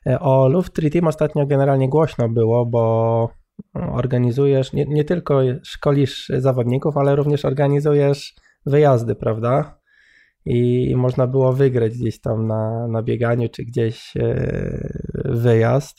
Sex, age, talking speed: male, 20-39, 115 wpm